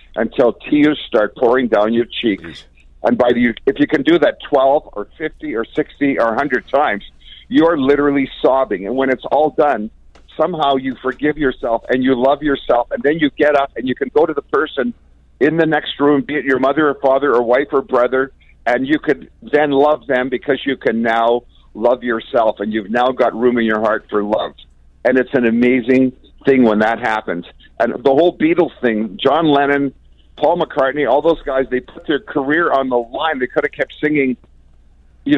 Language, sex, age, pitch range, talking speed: English, male, 50-69, 120-150 Hz, 205 wpm